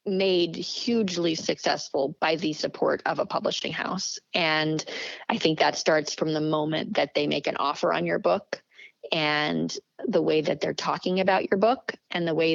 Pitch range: 165-205 Hz